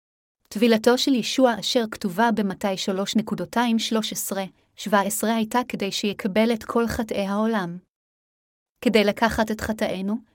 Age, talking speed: 30-49, 100 wpm